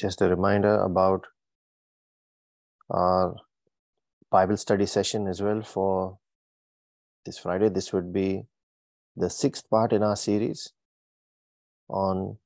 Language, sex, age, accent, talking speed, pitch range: English, male, 20-39, Indian, 110 wpm, 95-105 Hz